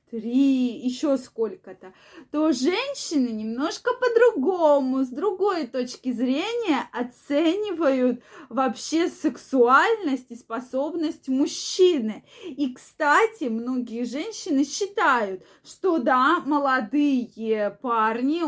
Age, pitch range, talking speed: 20-39, 250-325 Hz, 85 wpm